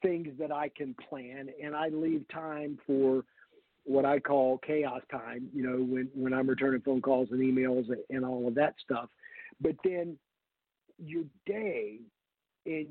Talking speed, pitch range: 165 wpm, 140-170 Hz